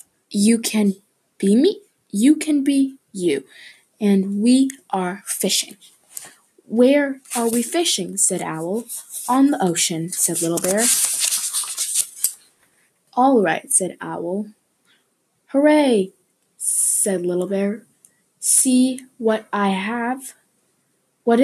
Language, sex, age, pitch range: English, female, 20-39, 190-250 Hz